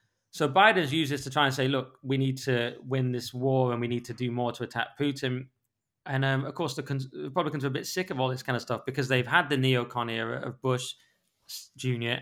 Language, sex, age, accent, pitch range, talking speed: English, male, 20-39, British, 120-135 Hz, 245 wpm